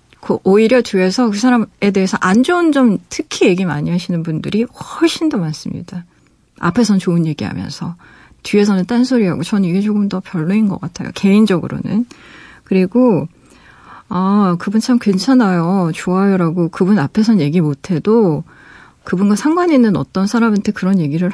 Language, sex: Korean, female